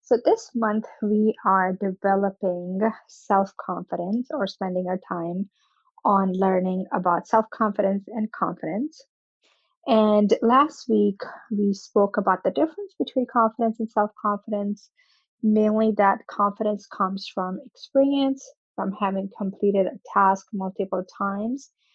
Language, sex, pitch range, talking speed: English, female, 190-225 Hz, 115 wpm